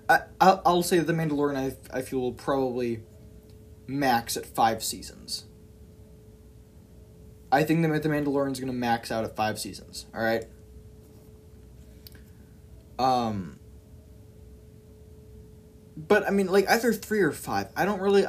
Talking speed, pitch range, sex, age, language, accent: 130 wpm, 105-145 Hz, male, 20-39, English, American